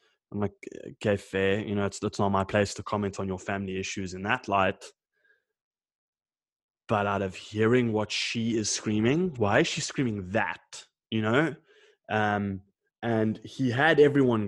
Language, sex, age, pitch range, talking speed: English, male, 20-39, 100-110 Hz, 165 wpm